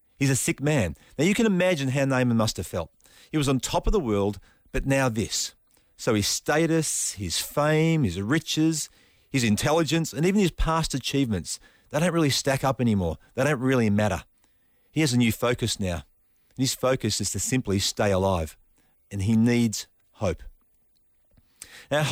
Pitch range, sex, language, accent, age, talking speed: 105-155 Hz, male, English, Australian, 40-59, 175 wpm